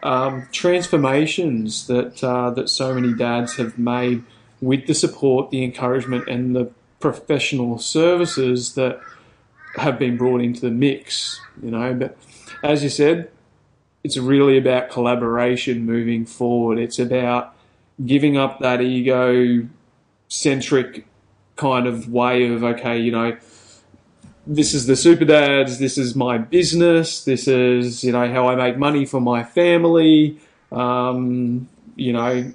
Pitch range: 125-140 Hz